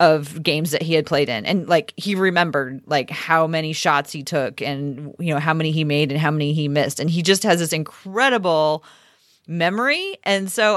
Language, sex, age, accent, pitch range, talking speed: English, female, 30-49, American, 150-190 Hz, 210 wpm